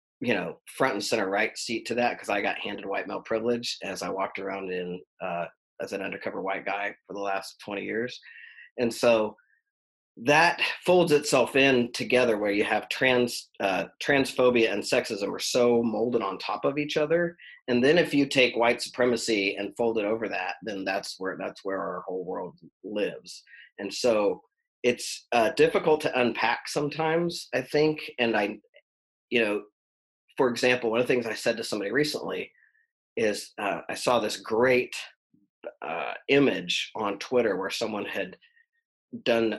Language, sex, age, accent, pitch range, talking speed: English, male, 40-59, American, 110-155 Hz, 175 wpm